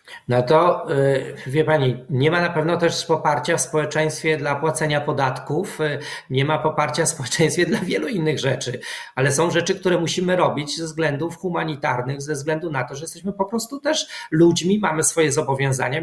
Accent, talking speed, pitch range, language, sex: native, 170 wpm, 140-170 Hz, Polish, male